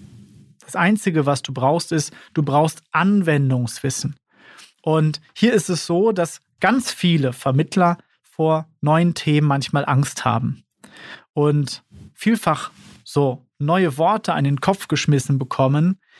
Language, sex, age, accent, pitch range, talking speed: German, male, 30-49, German, 135-170 Hz, 125 wpm